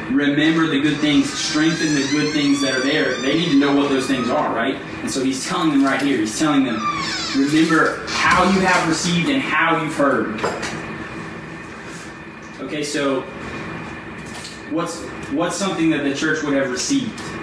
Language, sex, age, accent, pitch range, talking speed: English, male, 20-39, American, 135-175 Hz, 170 wpm